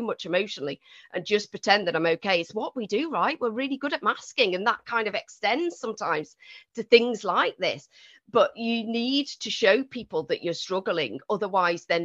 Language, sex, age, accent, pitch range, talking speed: English, female, 40-59, British, 180-255 Hz, 195 wpm